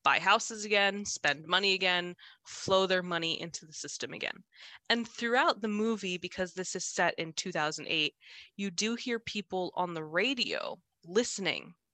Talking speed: 155 wpm